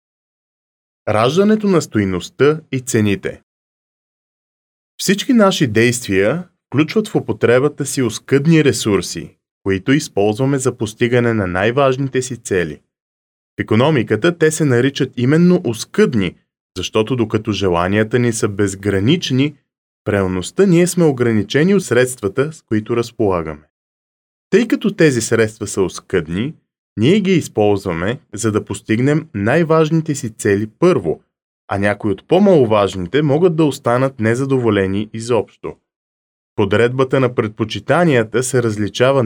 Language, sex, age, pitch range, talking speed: Bulgarian, male, 20-39, 105-155 Hz, 115 wpm